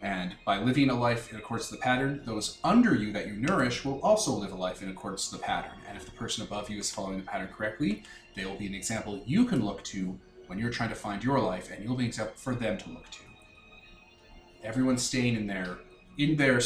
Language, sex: English, male